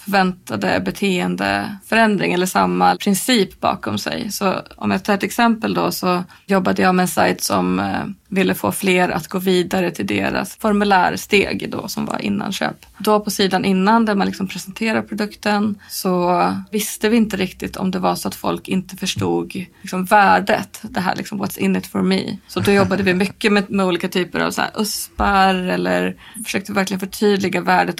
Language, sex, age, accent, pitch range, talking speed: Swedish, female, 20-39, native, 180-205 Hz, 180 wpm